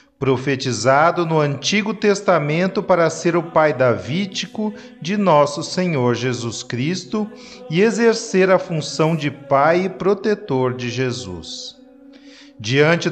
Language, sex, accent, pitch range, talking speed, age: Portuguese, male, Brazilian, 140-195 Hz, 115 wpm, 40-59